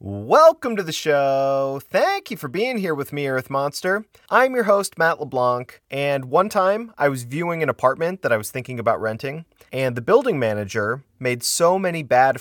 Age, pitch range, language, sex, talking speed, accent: 30-49, 115-160 Hz, English, male, 195 wpm, American